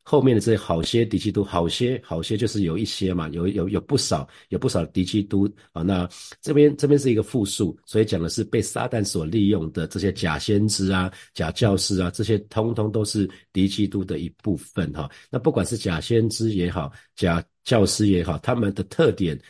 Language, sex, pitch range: Chinese, male, 90-110 Hz